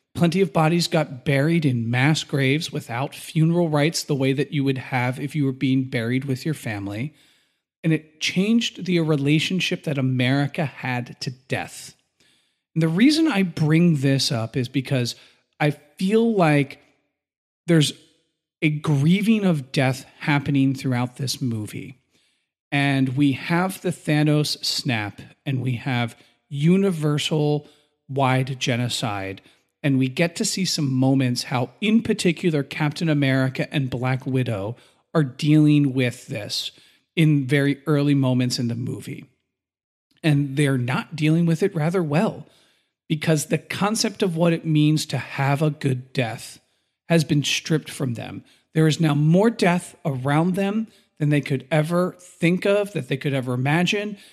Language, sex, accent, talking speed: English, male, American, 150 wpm